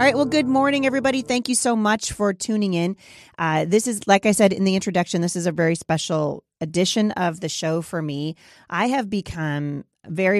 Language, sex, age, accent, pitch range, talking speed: English, female, 30-49, American, 150-185 Hz, 215 wpm